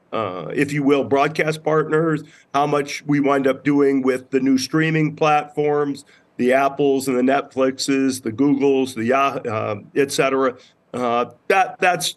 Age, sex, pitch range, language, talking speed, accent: 40-59, male, 135-160 Hz, English, 150 wpm, American